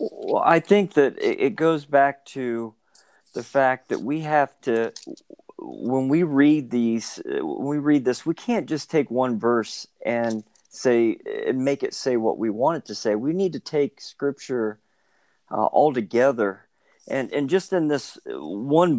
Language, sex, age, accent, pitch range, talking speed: English, male, 50-69, American, 130-165 Hz, 170 wpm